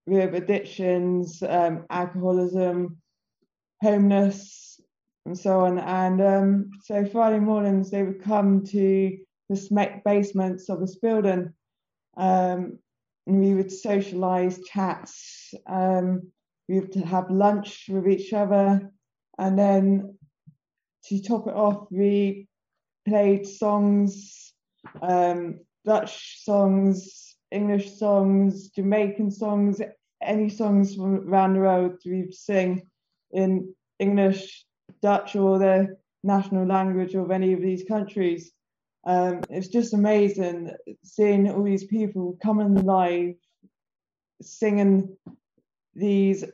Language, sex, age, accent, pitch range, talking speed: English, female, 20-39, British, 185-200 Hz, 110 wpm